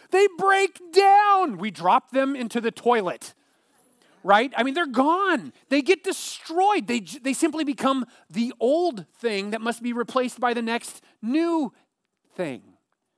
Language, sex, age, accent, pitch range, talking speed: English, male, 30-49, American, 190-285 Hz, 150 wpm